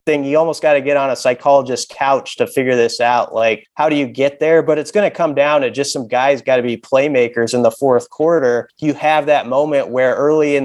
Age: 30-49